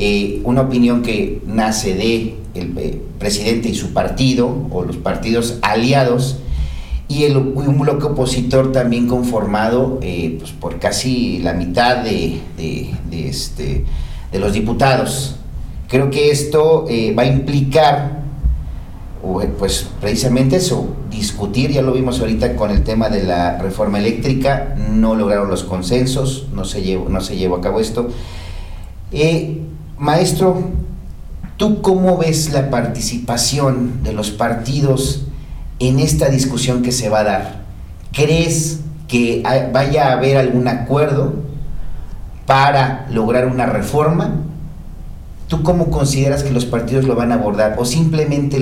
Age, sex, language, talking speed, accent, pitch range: 40-59, male, Spanish, 135 wpm, Mexican, 100-135 Hz